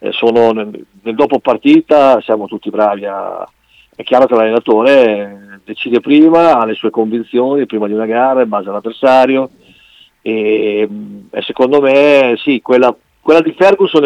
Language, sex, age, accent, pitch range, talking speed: Italian, male, 50-69, native, 105-125 Hz, 150 wpm